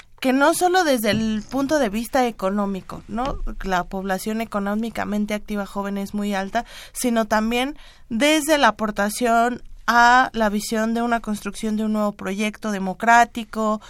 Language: Spanish